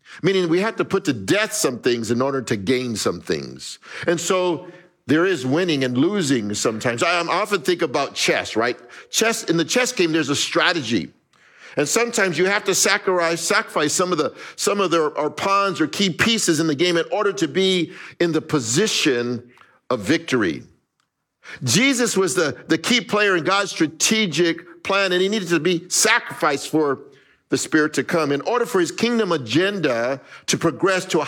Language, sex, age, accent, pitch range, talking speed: English, male, 50-69, American, 140-190 Hz, 185 wpm